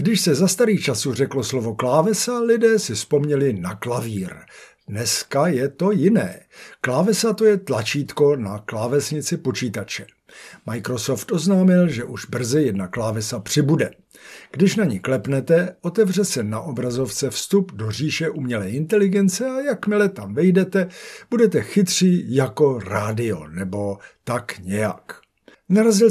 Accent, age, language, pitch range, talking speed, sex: native, 60-79, Czech, 120-190 Hz, 130 wpm, male